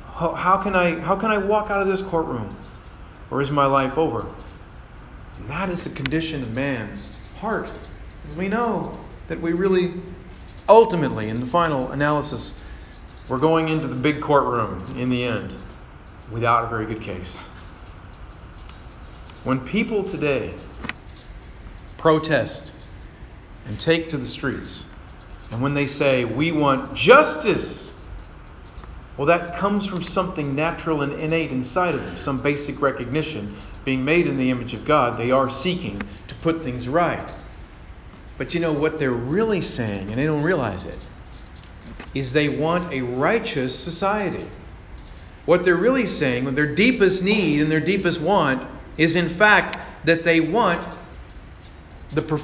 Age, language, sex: 40-59, English, male